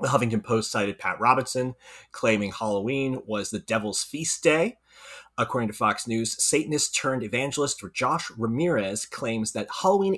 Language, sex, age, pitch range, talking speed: English, male, 30-49, 105-140 Hz, 135 wpm